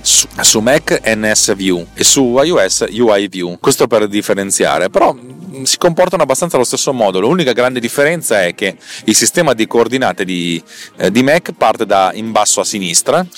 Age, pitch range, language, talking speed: 30-49, 95-125 Hz, Italian, 165 wpm